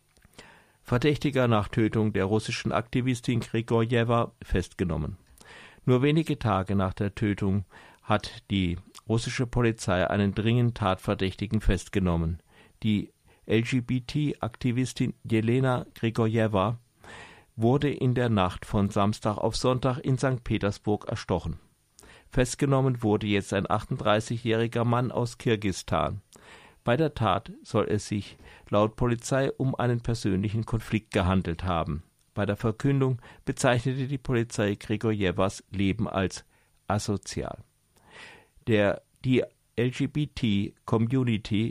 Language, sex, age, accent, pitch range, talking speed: German, male, 50-69, German, 100-125 Hz, 105 wpm